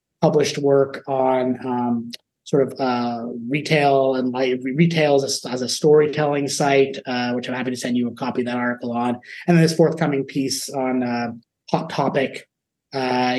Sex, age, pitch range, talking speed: male, 30-49, 125-140 Hz, 180 wpm